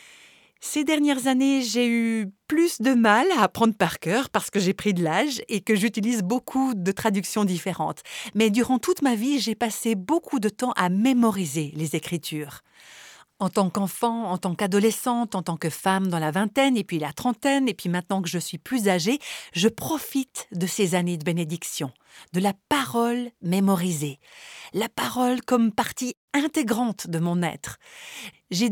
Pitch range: 180-240 Hz